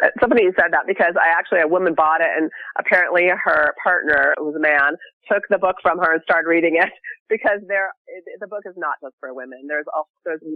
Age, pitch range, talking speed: 30-49, 150-190 Hz, 215 wpm